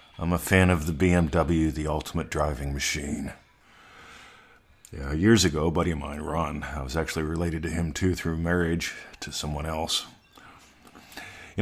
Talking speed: 160 wpm